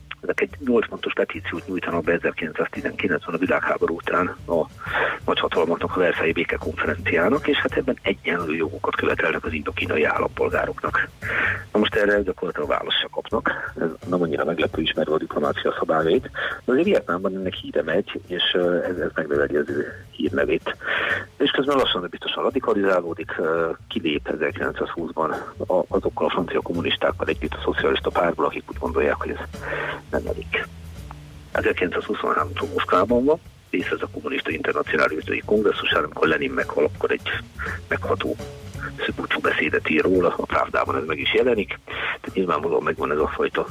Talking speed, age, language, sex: 145 wpm, 50-69, Hungarian, male